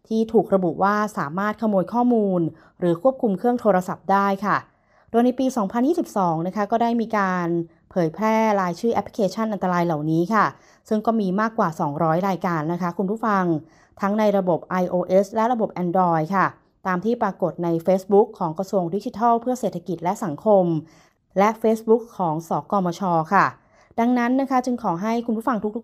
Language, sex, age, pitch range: Thai, female, 20-39, 180-220 Hz